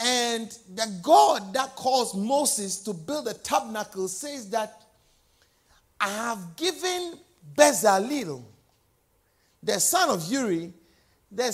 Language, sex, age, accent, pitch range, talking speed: English, male, 50-69, Nigerian, 165-260 Hz, 110 wpm